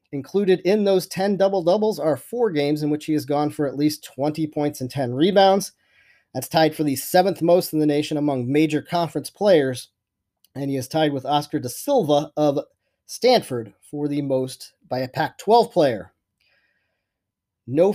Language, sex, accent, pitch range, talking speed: English, male, American, 135-175 Hz, 175 wpm